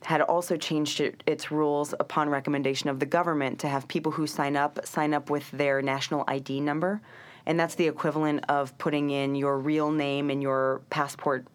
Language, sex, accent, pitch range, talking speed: English, female, American, 135-150 Hz, 185 wpm